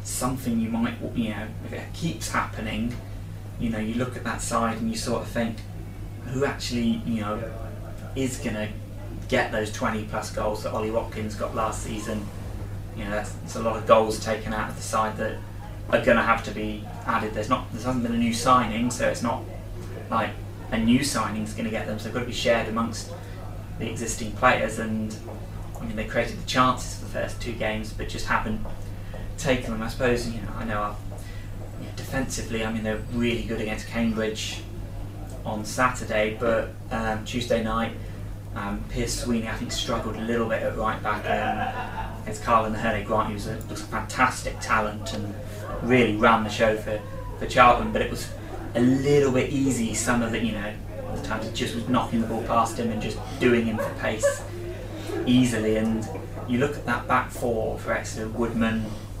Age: 20-39